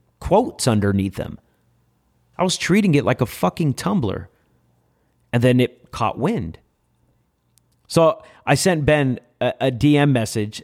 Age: 30-49